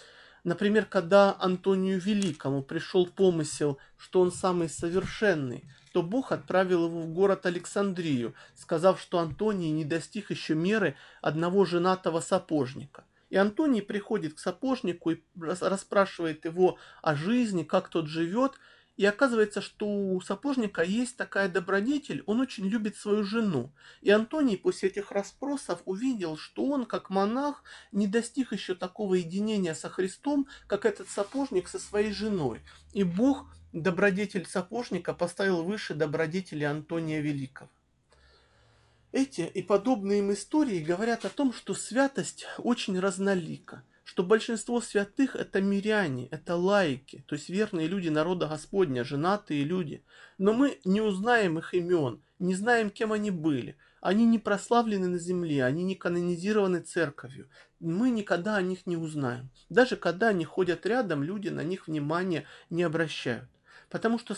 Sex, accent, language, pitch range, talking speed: male, native, Russian, 170-215 Hz, 140 wpm